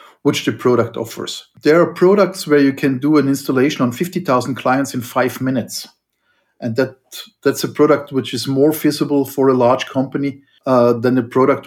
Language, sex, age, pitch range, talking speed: English, male, 50-69, 120-150 Hz, 185 wpm